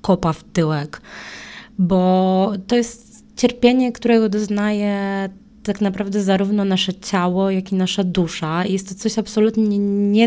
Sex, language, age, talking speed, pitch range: female, Polish, 20-39, 135 wpm, 185-210 Hz